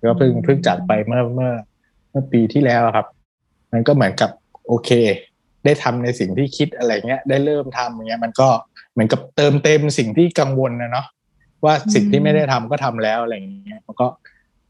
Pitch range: 115-140 Hz